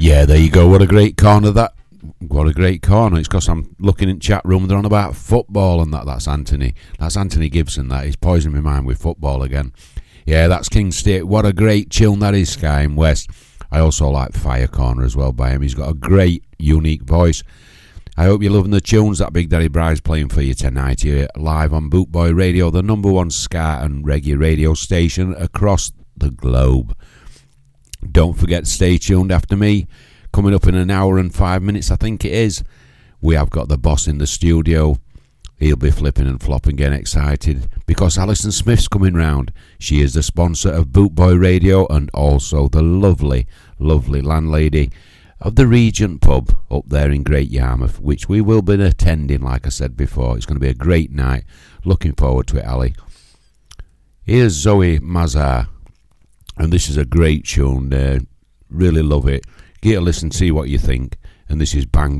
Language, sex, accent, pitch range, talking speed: English, male, British, 70-95 Hz, 195 wpm